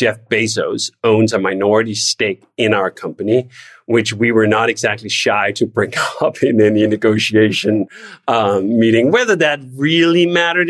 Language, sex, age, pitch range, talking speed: English, male, 40-59, 120-170 Hz, 150 wpm